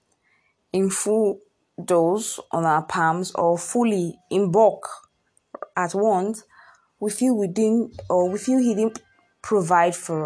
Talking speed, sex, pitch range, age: 135 wpm, female, 175-235 Hz, 20-39